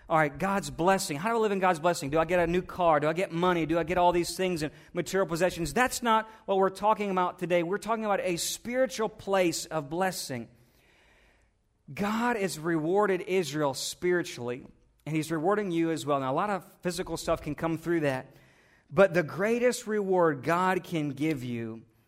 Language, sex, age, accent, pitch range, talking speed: English, male, 40-59, American, 130-175 Hz, 200 wpm